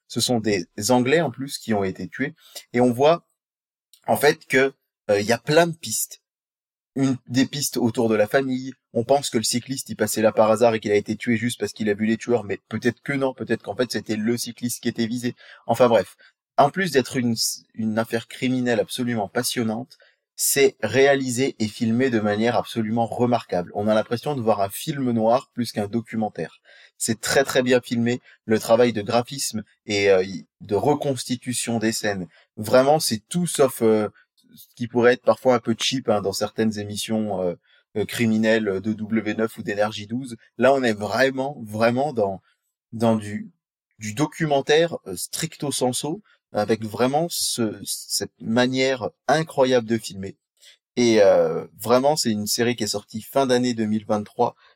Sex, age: male, 20-39